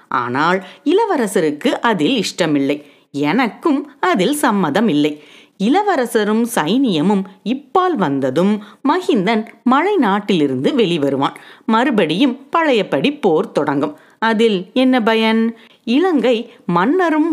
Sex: female